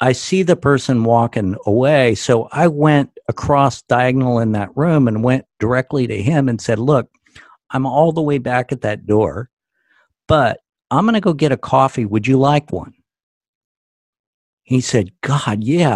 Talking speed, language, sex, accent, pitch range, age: 175 wpm, English, male, American, 100-135 Hz, 50-69